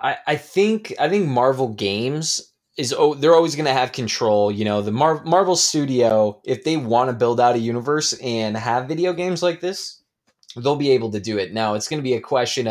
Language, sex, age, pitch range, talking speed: English, male, 20-39, 110-140 Hz, 215 wpm